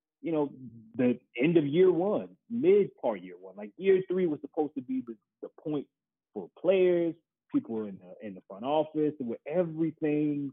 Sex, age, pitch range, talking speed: male, 30-49, 120-170 Hz, 180 wpm